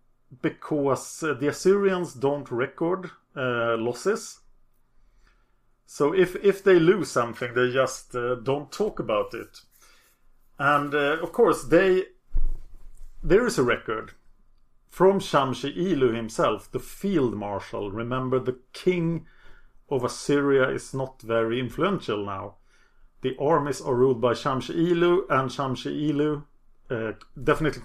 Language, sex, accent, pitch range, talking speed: English, male, Norwegian, 120-165 Hz, 120 wpm